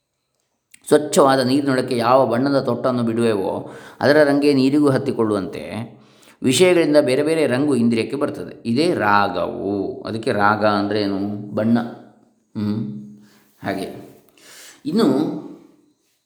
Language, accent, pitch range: Kannada, native, 110-145 Hz